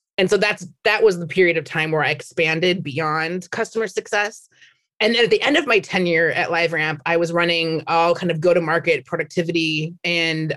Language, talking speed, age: English, 195 wpm, 30-49